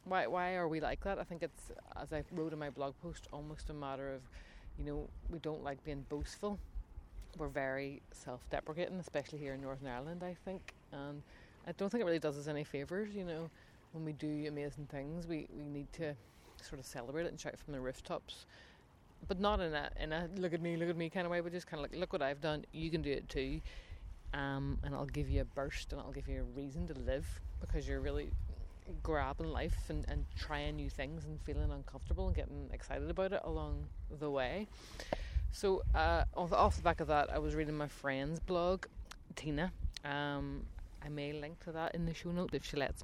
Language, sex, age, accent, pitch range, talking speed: English, female, 30-49, Irish, 125-165 Hz, 220 wpm